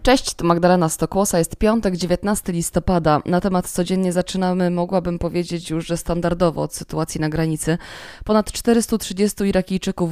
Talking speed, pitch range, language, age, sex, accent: 135 wpm, 165-190 Hz, Polish, 20-39, female, native